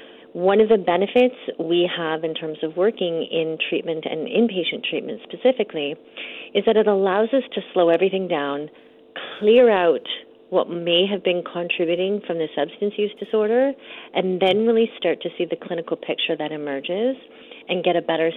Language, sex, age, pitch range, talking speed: English, female, 40-59, 165-200 Hz, 170 wpm